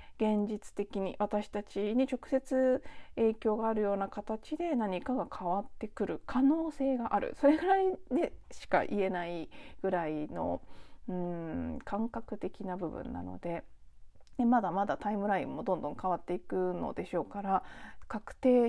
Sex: female